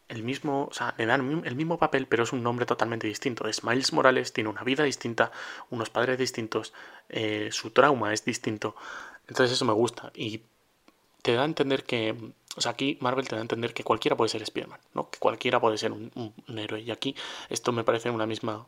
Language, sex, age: Spanish, male, 20-39